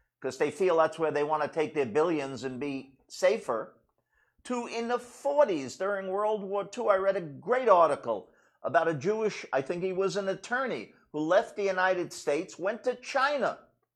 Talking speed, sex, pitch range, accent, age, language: 190 wpm, male, 175-245 Hz, American, 50-69, English